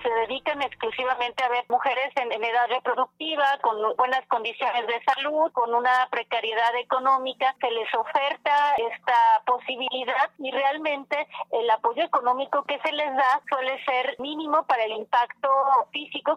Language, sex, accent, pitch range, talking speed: Spanish, female, Mexican, 235-275 Hz, 145 wpm